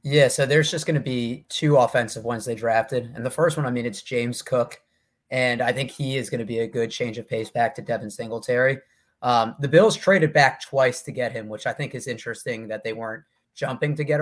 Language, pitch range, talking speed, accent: English, 120-150 Hz, 245 wpm, American